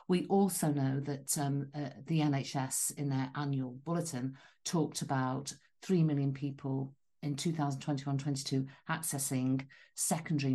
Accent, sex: British, female